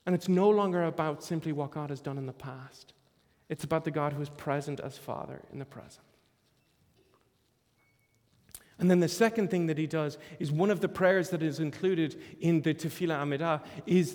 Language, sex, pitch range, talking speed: English, male, 150-180 Hz, 195 wpm